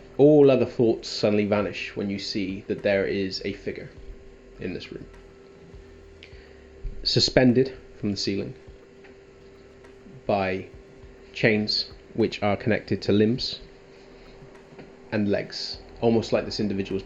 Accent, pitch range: British, 95-110 Hz